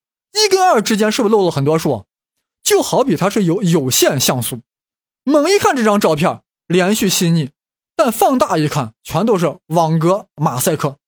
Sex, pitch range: male, 150-215 Hz